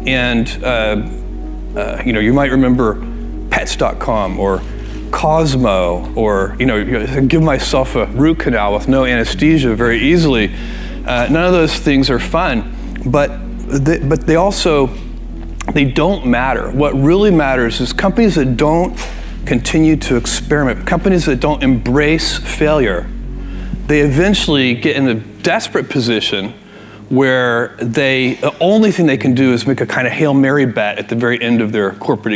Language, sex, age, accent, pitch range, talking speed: English, male, 40-59, American, 115-150 Hz, 155 wpm